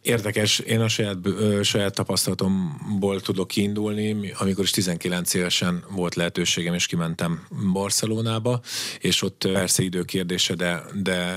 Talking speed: 125 wpm